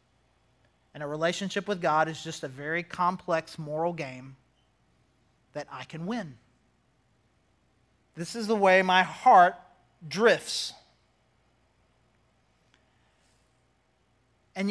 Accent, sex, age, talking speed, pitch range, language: American, male, 30-49, 100 wpm, 160-225 Hz, English